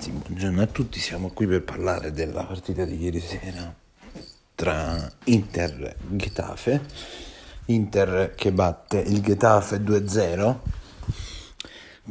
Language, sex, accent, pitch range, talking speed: Italian, male, native, 100-130 Hz, 110 wpm